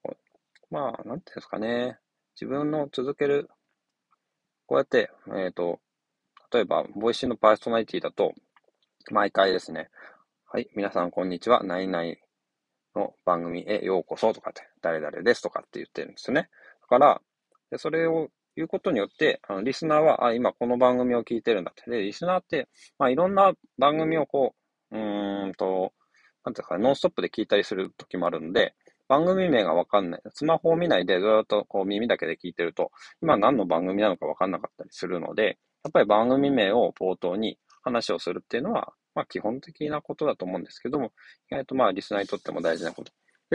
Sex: male